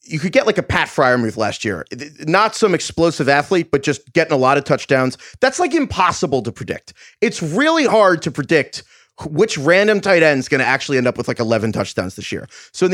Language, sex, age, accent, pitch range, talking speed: English, male, 30-49, American, 125-175 Hz, 225 wpm